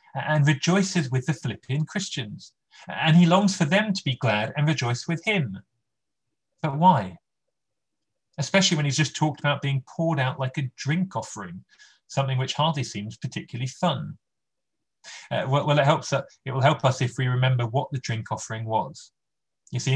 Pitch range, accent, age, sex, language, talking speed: 120-155 Hz, British, 30-49, male, English, 170 wpm